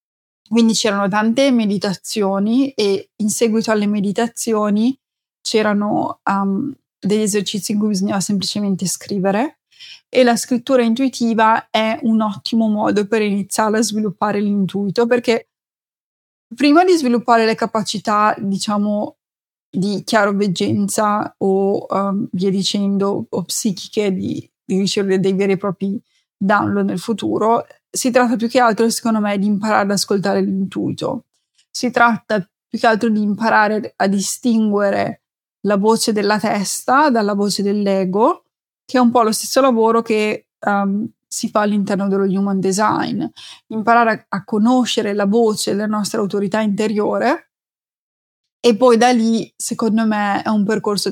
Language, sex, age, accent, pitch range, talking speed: Italian, female, 20-39, native, 200-230 Hz, 140 wpm